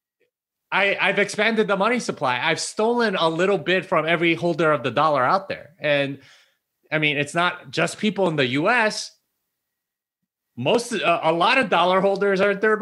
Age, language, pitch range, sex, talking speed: 30-49, English, 135-190 Hz, male, 180 wpm